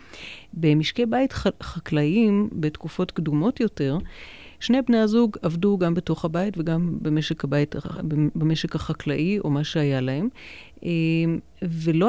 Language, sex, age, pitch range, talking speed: Hebrew, female, 40-59, 155-200 Hz, 115 wpm